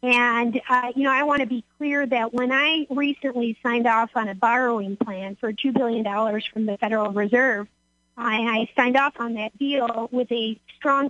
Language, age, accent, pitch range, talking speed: English, 40-59, American, 220-265 Hz, 190 wpm